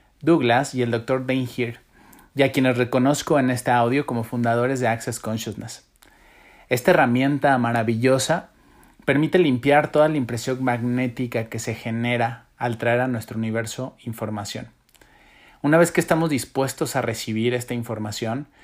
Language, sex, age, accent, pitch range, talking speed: Spanish, male, 30-49, Mexican, 115-135 Hz, 145 wpm